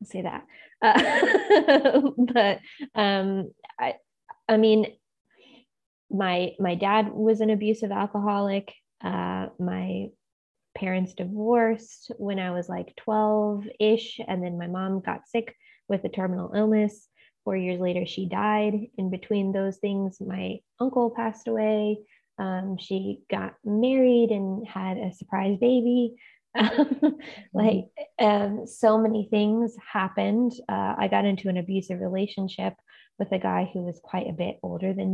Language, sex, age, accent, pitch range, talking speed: English, female, 20-39, American, 180-220 Hz, 135 wpm